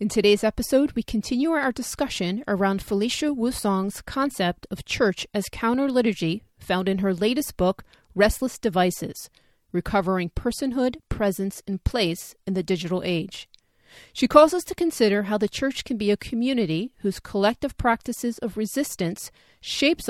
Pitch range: 190-250 Hz